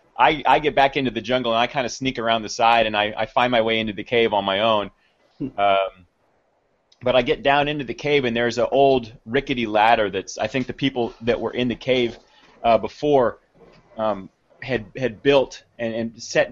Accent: American